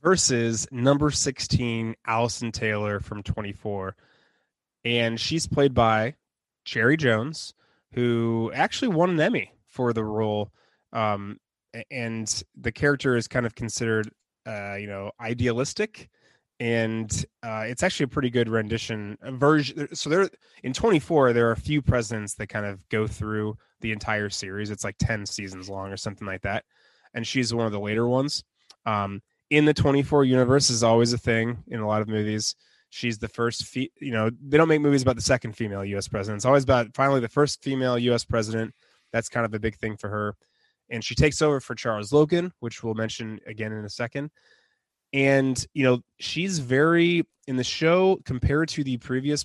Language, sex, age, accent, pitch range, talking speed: English, male, 20-39, American, 110-135 Hz, 180 wpm